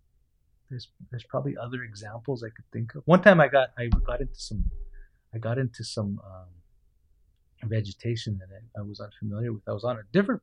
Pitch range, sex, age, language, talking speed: 105-130 Hz, male, 30-49, English, 190 wpm